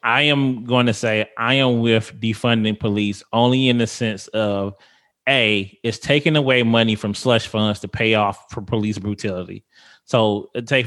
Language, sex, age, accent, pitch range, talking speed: English, male, 20-39, American, 105-125 Hz, 170 wpm